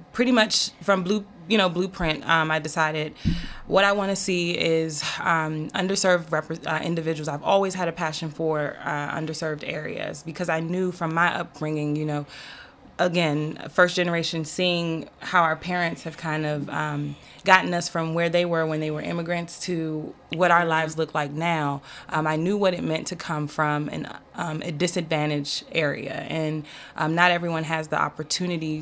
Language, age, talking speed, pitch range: English, 20-39, 180 wpm, 155-175 Hz